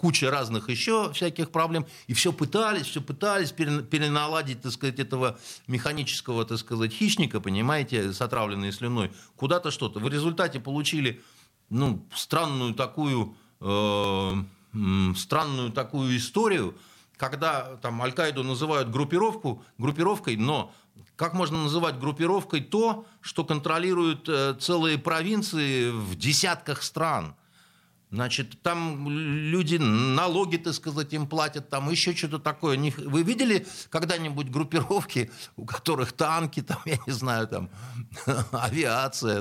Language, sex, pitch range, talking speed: Russian, male, 115-160 Hz, 120 wpm